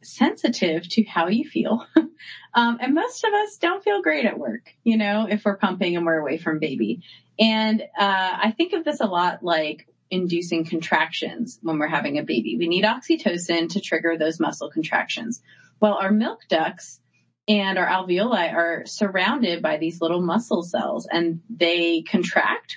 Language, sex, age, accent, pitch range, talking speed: English, female, 30-49, American, 175-230 Hz, 175 wpm